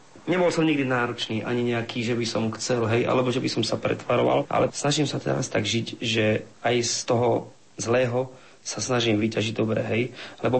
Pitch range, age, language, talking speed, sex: 115-130 Hz, 30-49, Slovak, 190 wpm, male